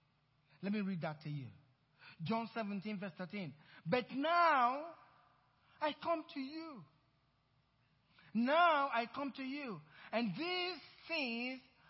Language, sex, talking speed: English, male, 120 wpm